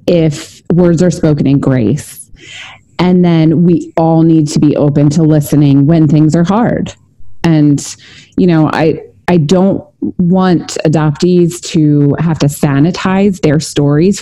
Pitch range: 150-190 Hz